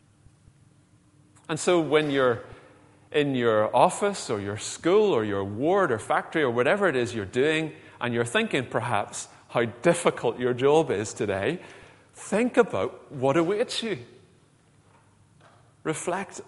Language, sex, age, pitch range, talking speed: English, male, 30-49, 110-155 Hz, 135 wpm